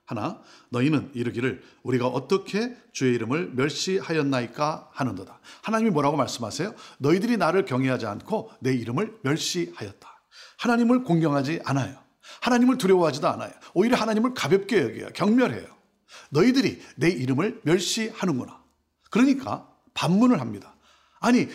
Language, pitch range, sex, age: Korean, 140-225 Hz, male, 50-69